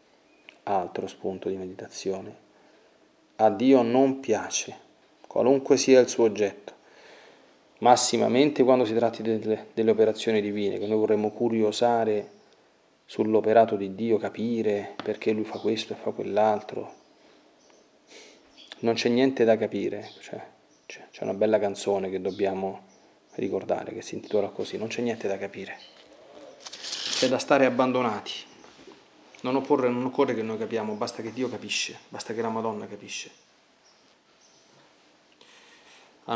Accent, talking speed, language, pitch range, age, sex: native, 130 wpm, Italian, 105-125 Hz, 30-49, male